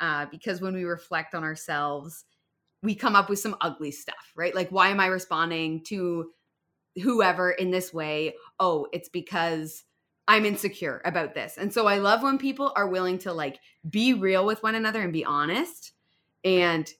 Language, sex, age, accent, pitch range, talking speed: English, female, 20-39, American, 160-195 Hz, 180 wpm